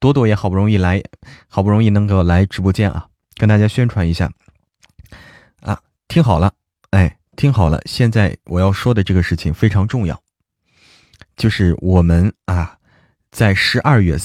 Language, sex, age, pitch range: Chinese, male, 20-39, 85-115 Hz